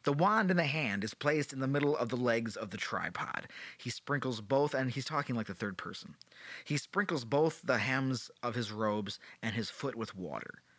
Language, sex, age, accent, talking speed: English, male, 30-49, American, 215 wpm